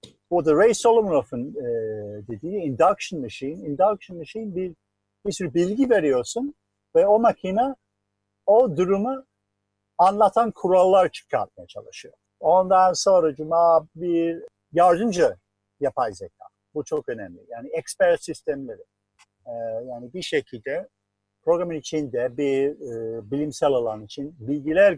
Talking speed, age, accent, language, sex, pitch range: 115 wpm, 50-69, native, Turkish, male, 135-190 Hz